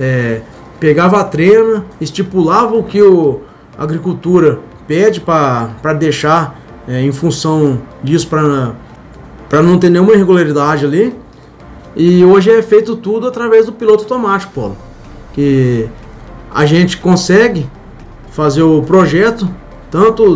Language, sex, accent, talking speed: Portuguese, male, Brazilian, 110 wpm